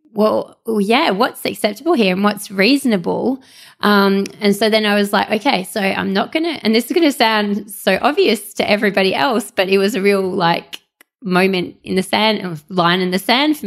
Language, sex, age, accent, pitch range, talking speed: English, female, 20-39, Australian, 190-230 Hz, 205 wpm